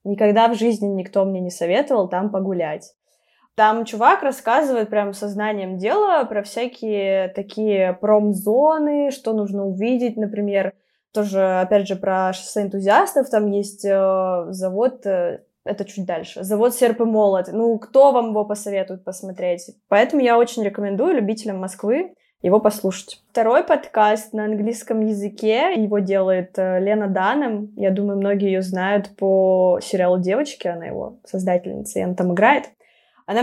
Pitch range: 195-240 Hz